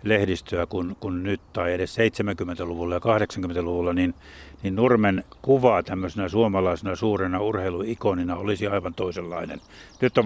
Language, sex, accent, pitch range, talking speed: Finnish, male, native, 90-110 Hz, 130 wpm